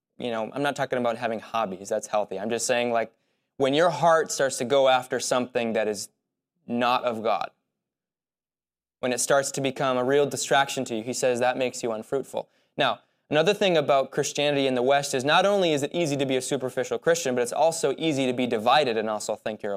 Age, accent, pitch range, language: 20-39, American, 120-145 Hz, English